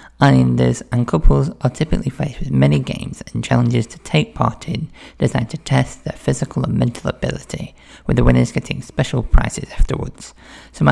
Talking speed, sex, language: 170 wpm, male, English